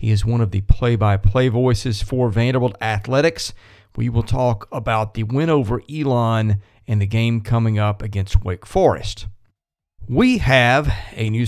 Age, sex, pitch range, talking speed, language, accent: 40-59, male, 105-135 Hz, 155 wpm, English, American